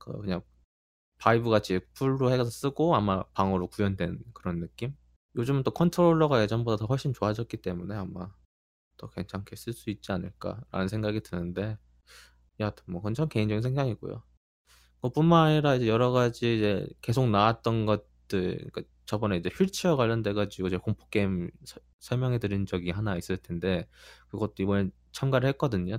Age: 20-39